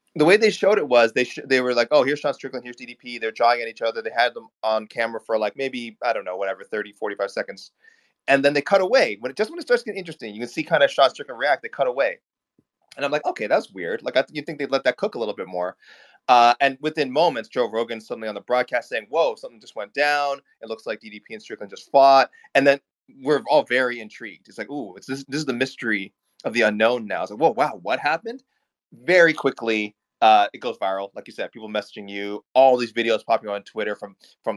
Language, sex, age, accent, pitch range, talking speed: English, male, 20-39, American, 115-145 Hz, 255 wpm